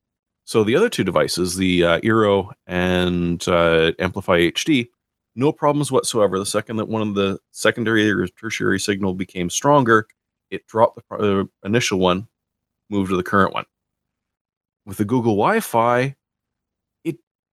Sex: male